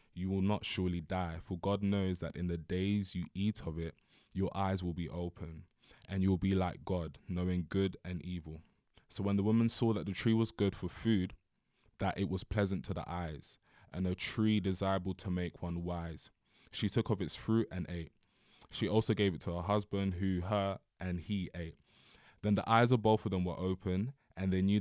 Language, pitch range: English, 85-100 Hz